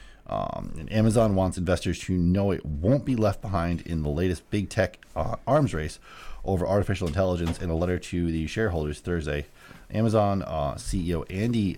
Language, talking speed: English, 175 wpm